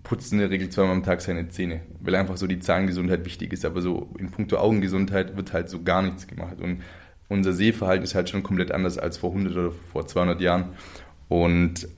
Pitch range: 90-105 Hz